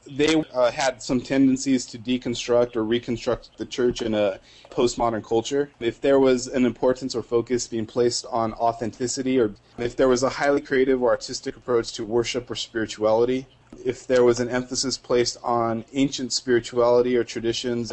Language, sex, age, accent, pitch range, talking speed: English, male, 30-49, American, 115-125 Hz, 170 wpm